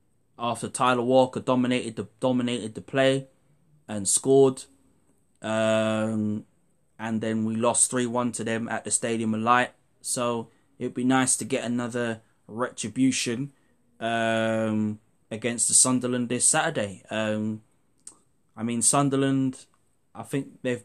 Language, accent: English, British